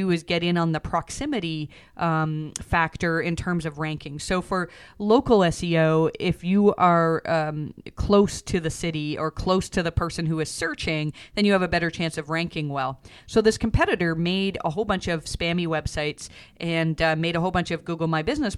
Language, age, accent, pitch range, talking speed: English, 40-59, American, 160-180 Hz, 195 wpm